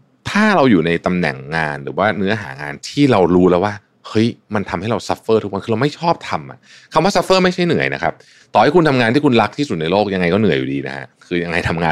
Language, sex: Thai, male